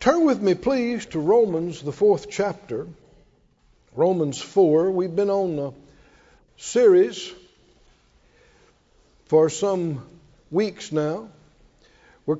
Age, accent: 60-79, American